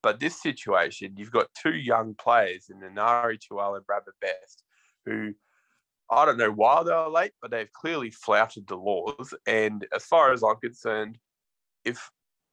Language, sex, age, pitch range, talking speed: English, male, 20-39, 105-120 Hz, 170 wpm